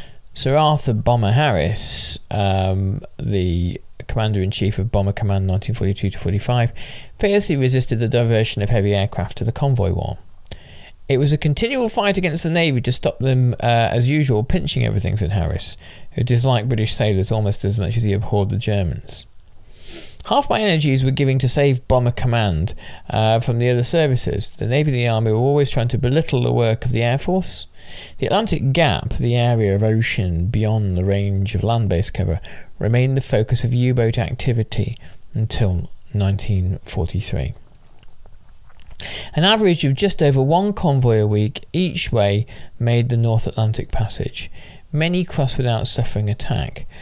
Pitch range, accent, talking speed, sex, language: 100-135 Hz, British, 160 wpm, male, English